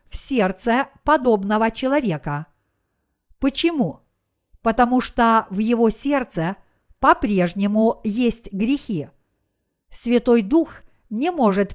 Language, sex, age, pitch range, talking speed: Russian, female, 50-69, 205-255 Hz, 85 wpm